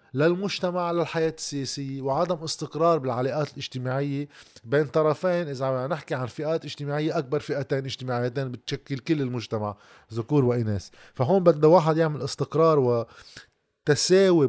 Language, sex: Arabic, male